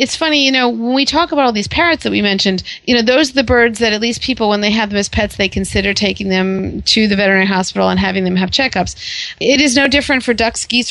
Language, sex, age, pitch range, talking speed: English, female, 30-49, 195-235 Hz, 275 wpm